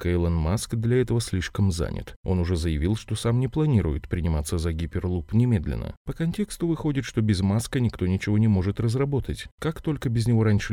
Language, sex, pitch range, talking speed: Russian, male, 85-115 Hz, 185 wpm